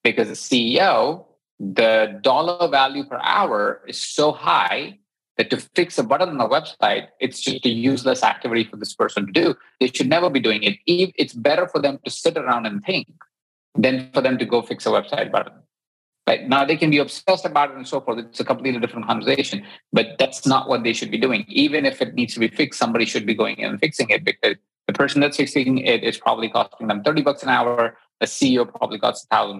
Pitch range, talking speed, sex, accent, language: 120-150 Hz, 225 wpm, male, Indian, English